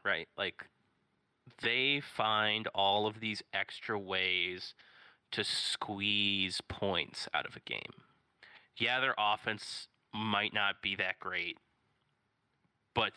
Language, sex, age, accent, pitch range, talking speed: English, male, 20-39, American, 100-125 Hz, 115 wpm